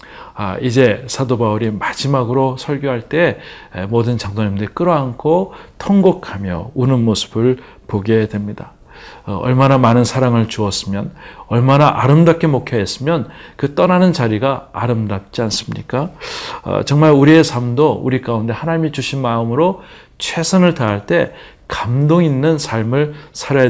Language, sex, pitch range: Korean, male, 115-150 Hz